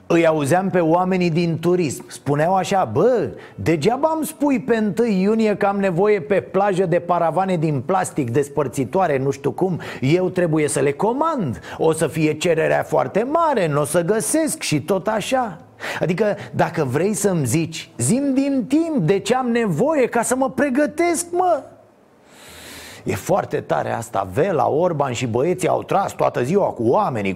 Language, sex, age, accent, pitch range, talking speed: Romanian, male, 30-49, native, 145-215 Hz, 170 wpm